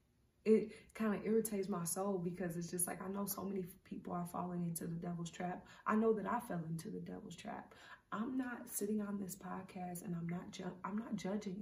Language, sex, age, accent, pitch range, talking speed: English, female, 30-49, American, 175-205 Hz, 220 wpm